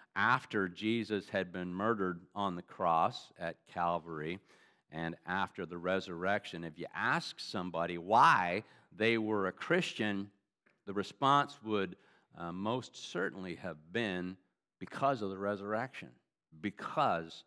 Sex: male